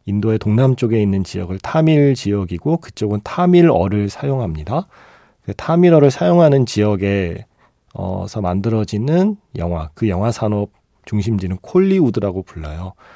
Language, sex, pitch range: Korean, male, 95-140 Hz